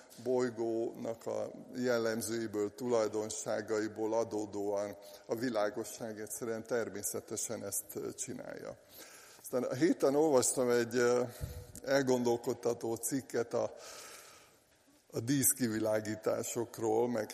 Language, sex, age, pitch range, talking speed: Hungarian, male, 50-69, 110-125 Hz, 75 wpm